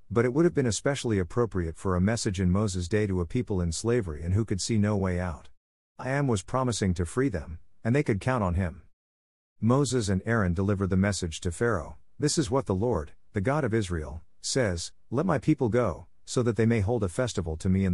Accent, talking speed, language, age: American, 235 wpm, English, 50-69